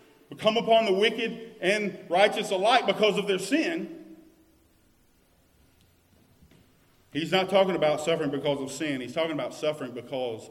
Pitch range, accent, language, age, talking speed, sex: 145-225 Hz, American, English, 40-59, 145 wpm, male